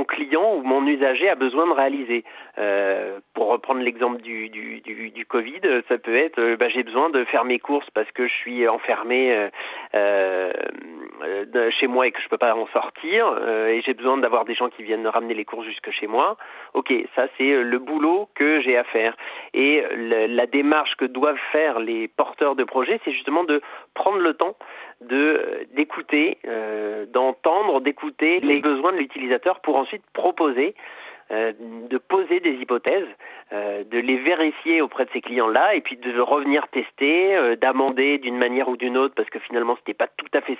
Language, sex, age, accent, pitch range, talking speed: French, male, 30-49, French, 115-145 Hz, 195 wpm